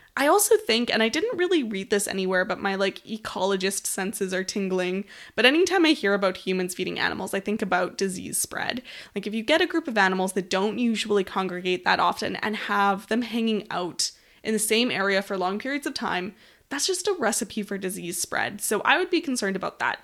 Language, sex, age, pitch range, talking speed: English, female, 20-39, 195-275 Hz, 215 wpm